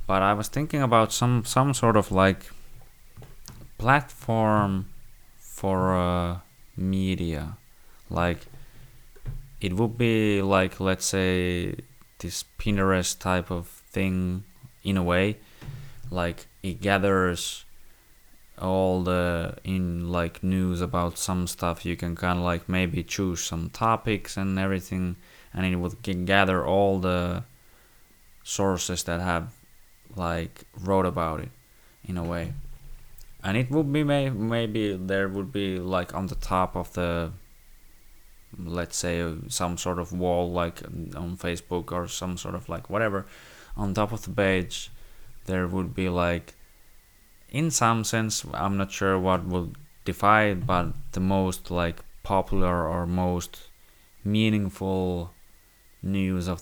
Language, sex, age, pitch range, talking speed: Finnish, male, 20-39, 90-105 Hz, 130 wpm